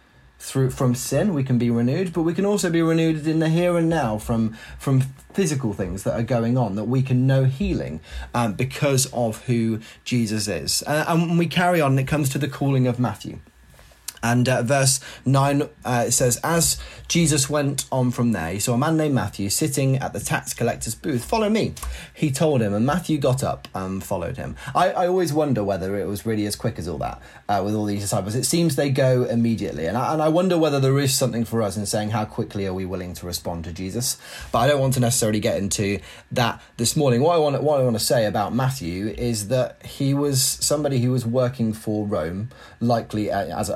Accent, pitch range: British, 110-145 Hz